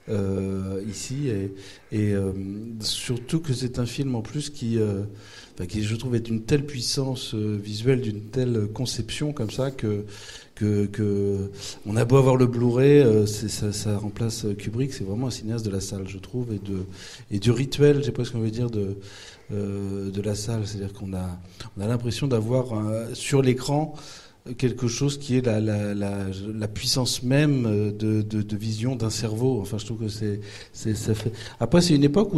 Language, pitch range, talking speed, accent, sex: French, 105-130 Hz, 195 wpm, French, male